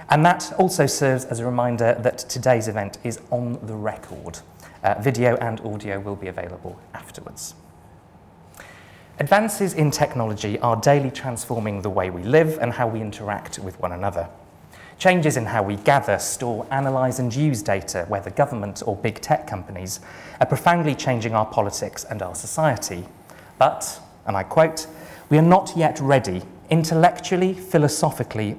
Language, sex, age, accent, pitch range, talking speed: English, male, 30-49, British, 100-140 Hz, 155 wpm